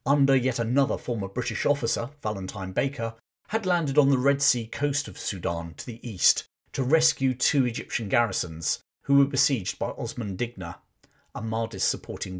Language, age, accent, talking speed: English, 50-69, British, 160 wpm